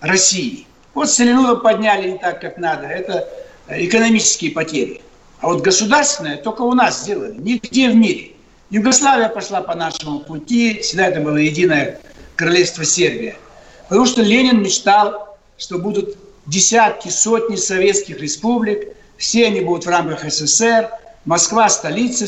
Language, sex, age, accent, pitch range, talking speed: Russian, male, 60-79, native, 185-245 Hz, 135 wpm